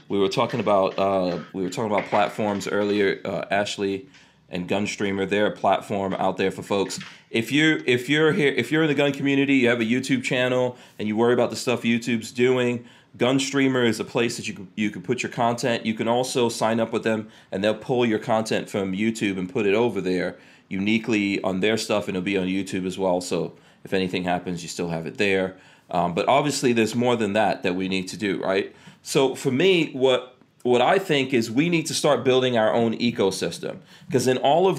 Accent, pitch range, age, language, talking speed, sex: American, 100-130 Hz, 30-49, English, 225 wpm, male